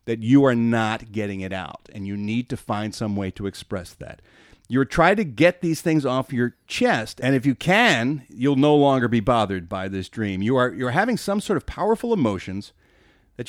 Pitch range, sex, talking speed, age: 110-145 Hz, male, 215 wpm, 40-59